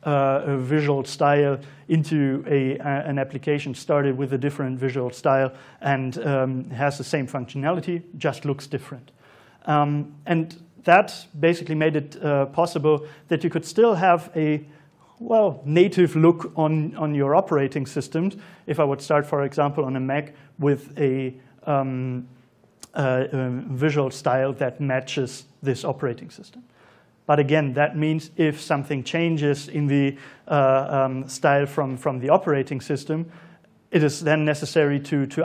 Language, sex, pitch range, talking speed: English, male, 135-155 Hz, 145 wpm